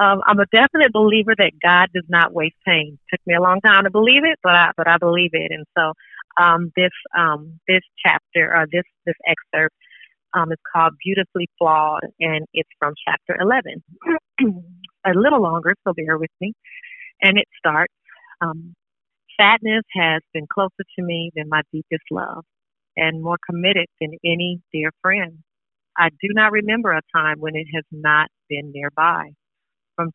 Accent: American